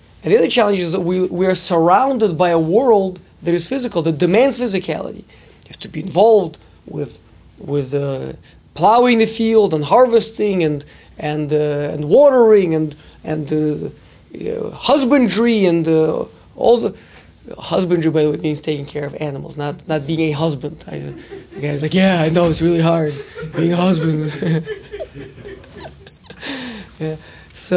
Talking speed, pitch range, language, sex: 165 wpm, 160-245 Hz, English, male